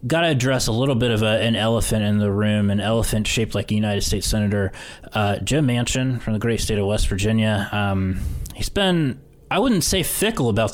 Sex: male